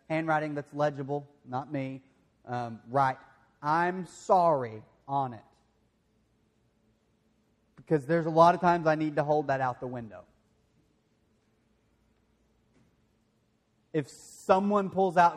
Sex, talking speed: male, 115 wpm